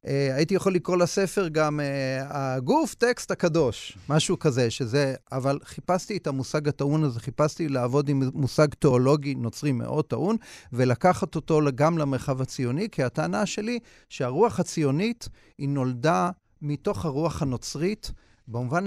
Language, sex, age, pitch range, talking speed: Hebrew, male, 40-59, 135-180 Hz, 135 wpm